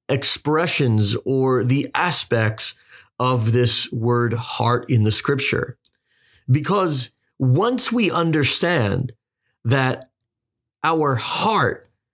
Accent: American